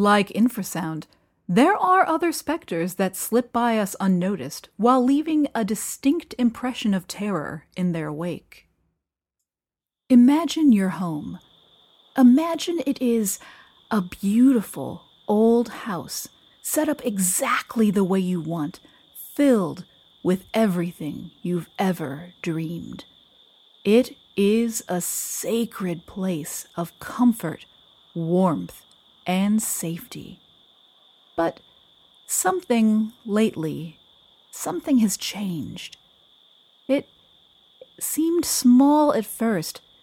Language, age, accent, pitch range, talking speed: English, 30-49, American, 175-235 Hz, 95 wpm